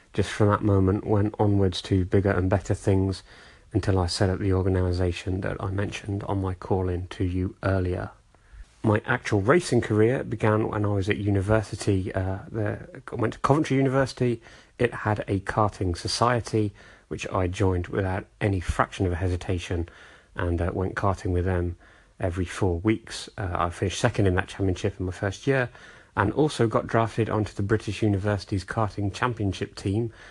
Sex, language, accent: male, English, British